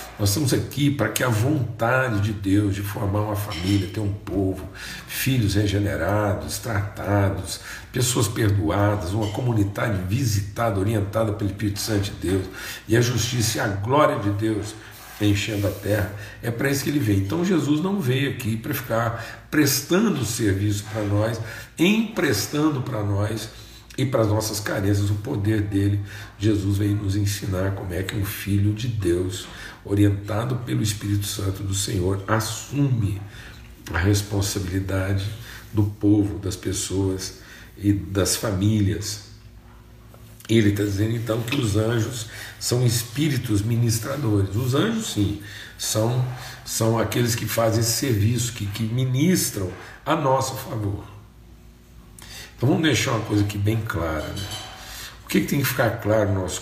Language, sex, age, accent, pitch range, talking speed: Portuguese, male, 60-79, Brazilian, 100-115 Hz, 145 wpm